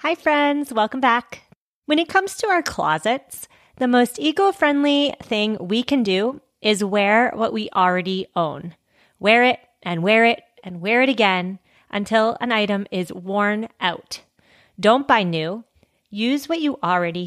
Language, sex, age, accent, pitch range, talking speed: English, female, 30-49, American, 195-270 Hz, 155 wpm